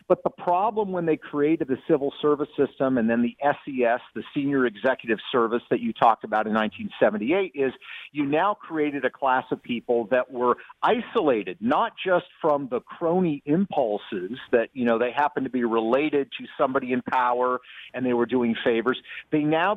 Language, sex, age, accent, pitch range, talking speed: English, male, 50-69, American, 130-180 Hz, 180 wpm